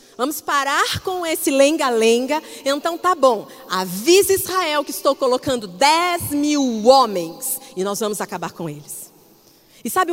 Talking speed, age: 140 wpm, 40-59